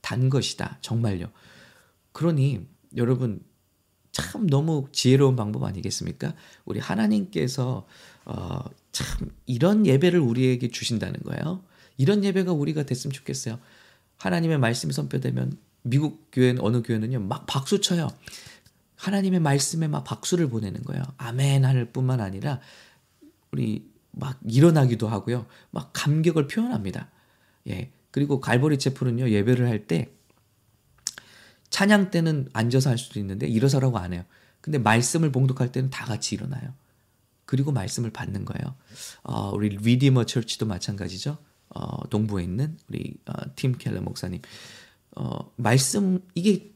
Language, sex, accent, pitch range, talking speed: English, male, Korean, 115-155 Hz, 115 wpm